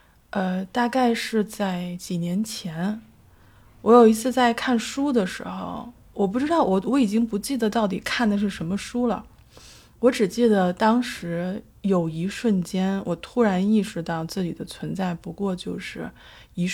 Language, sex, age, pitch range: Chinese, female, 20-39, 180-230 Hz